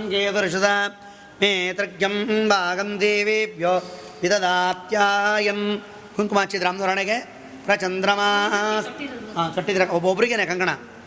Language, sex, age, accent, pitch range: Kannada, male, 30-49, native, 180-205 Hz